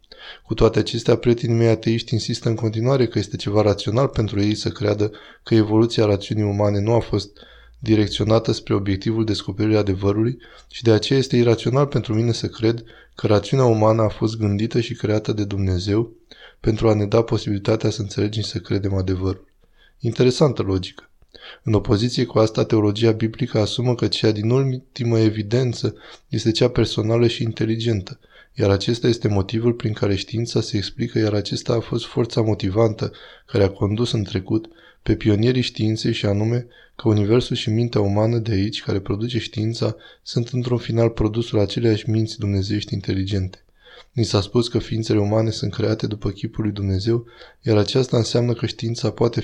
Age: 20-39